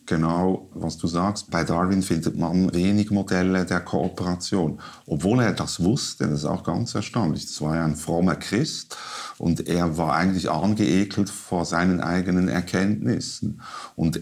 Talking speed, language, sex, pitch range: 155 wpm, German, male, 80-95 Hz